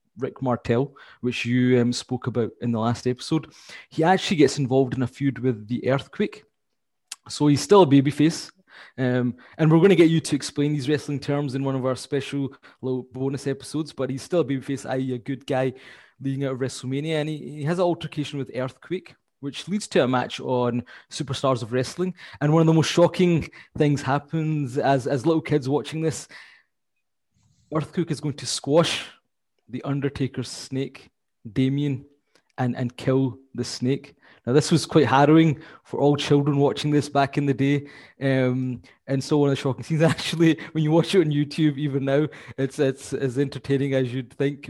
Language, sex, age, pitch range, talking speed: English, male, 20-39, 130-150 Hz, 190 wpm